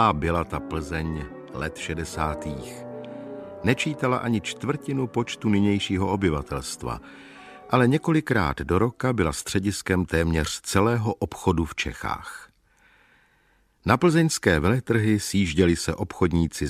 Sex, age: male, 50-69